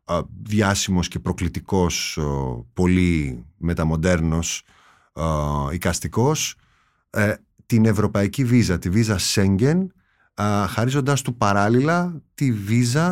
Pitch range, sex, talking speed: 95-140 Hz, male, 80 wpm